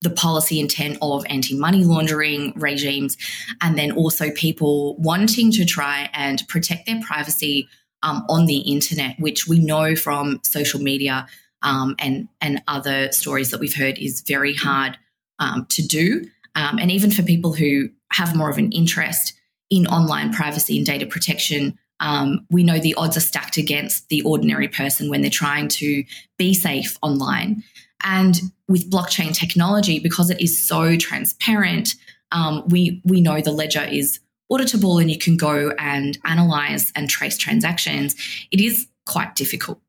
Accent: Australian